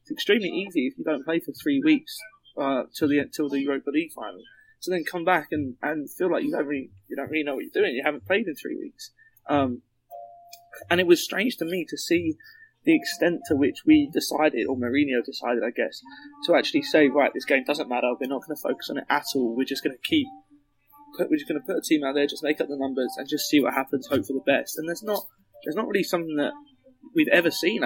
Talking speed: 260 wpm